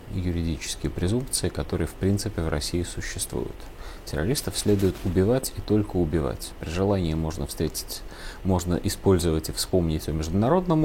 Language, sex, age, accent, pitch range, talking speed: Russian, male, 30-49, native, 85-115 Hz, 135 wpm